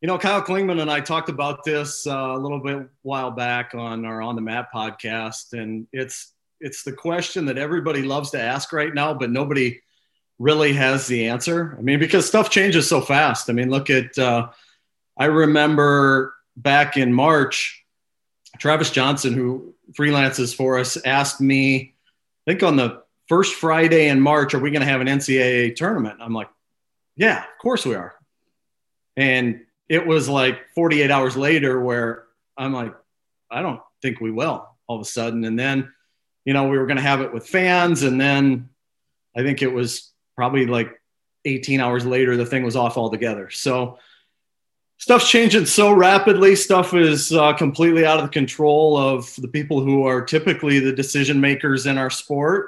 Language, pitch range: English, 125-155 Hz